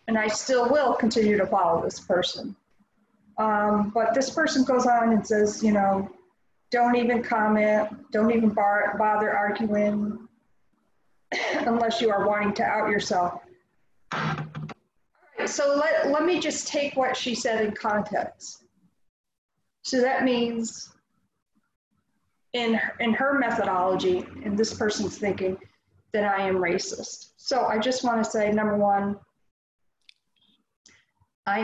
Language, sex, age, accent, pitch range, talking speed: English, female, 40-59, American, 200-235 Hz, 135 wpm